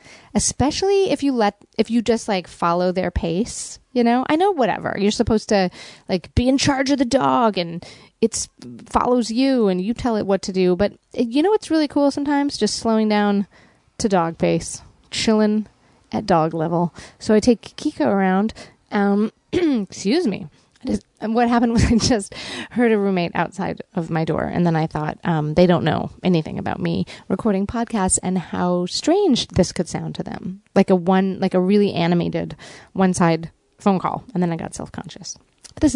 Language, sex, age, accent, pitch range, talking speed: English, female, 30-49, American, 180-230 Hz, 190 wpm